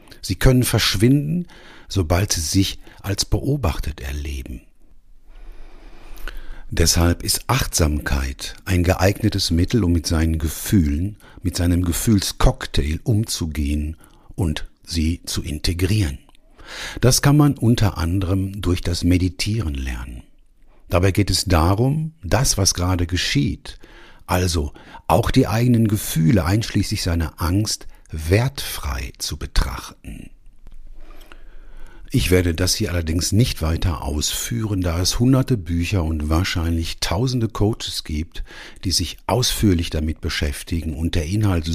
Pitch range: 80-105 Hz